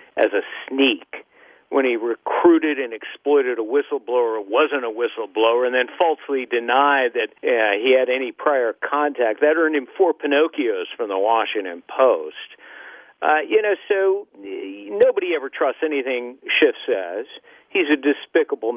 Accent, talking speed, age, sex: American, 150 wpm, 50-69, male